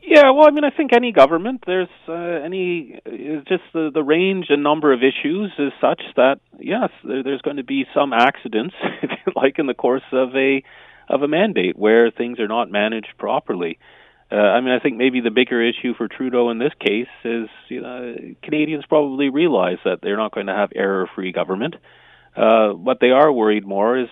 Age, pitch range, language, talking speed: 40-59, 95-130 Hz, English, 200 wpm